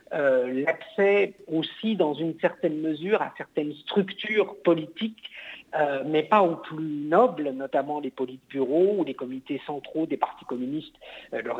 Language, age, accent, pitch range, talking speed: French, 50-69, French, 140-185 Hz, 150 wpm